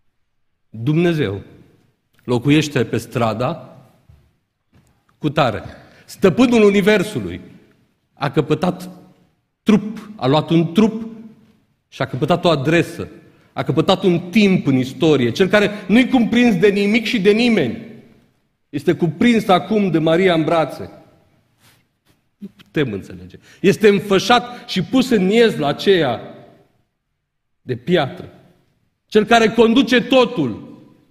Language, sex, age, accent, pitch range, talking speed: Romanian, male, 40-59, native, 115-195 Hz, 110 wpm